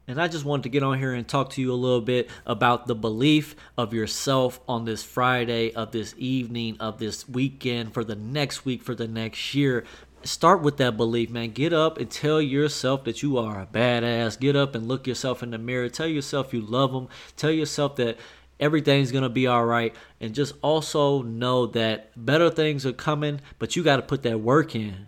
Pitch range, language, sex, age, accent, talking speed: 115-140 Hz, English, male, 20-39, American, 220 wpm